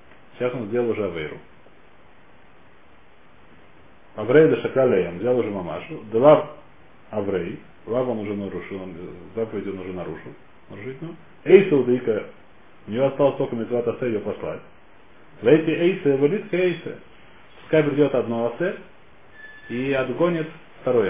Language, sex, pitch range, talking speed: Russian, male, 120-160 Hz, 125 wpm